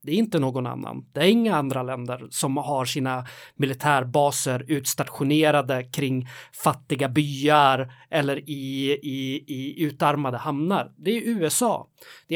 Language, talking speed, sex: Swedish, 135 wpm, male